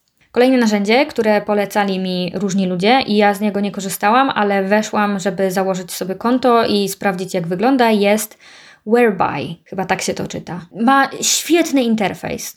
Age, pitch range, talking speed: 20-39, 200-245 Hz, 160 wpm